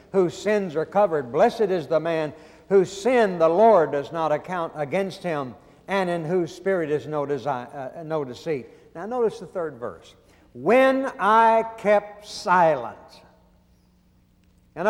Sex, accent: male, American